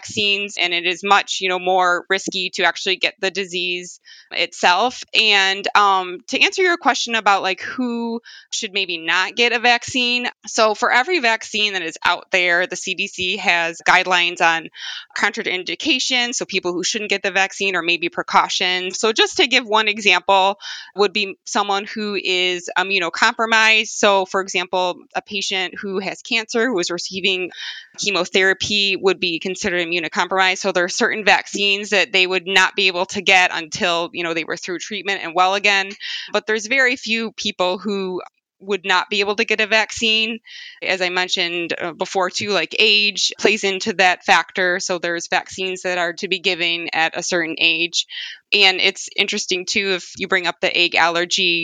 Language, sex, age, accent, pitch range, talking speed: English, female, 20-39, American, 180-210 Hz, 180 wpm